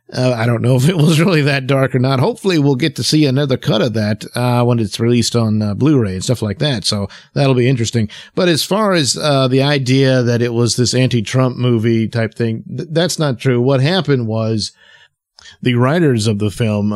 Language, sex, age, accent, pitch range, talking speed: English, male, 50-69, American, 115-155 Hz, 220 wpm